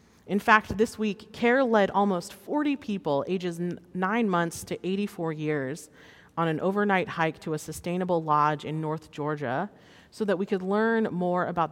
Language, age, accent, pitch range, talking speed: English, 30-49, American, 155-195 Hz, 170 wpm